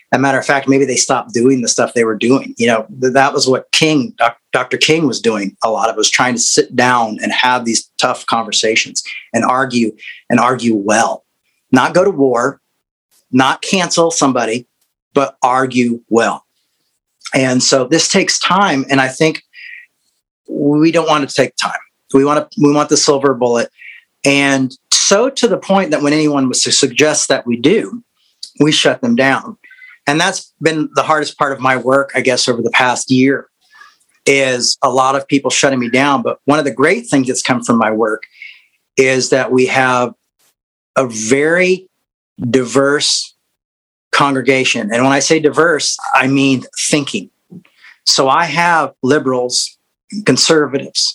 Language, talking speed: English, 170 wpm